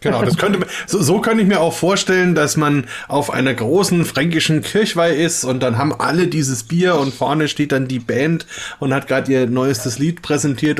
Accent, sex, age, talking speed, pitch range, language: German, male, 30-49, 205 wpm, 140-180 Hz, German